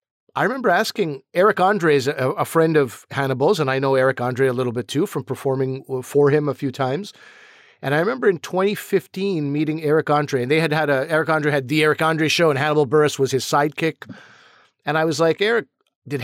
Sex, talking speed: male, 215 wpm